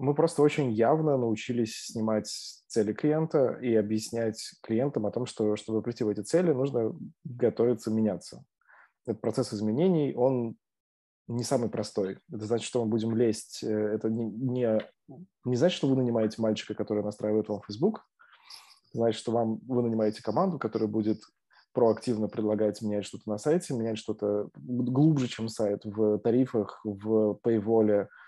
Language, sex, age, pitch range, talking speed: Russian, male, 20-39, 105-120 Hz, 150 wpm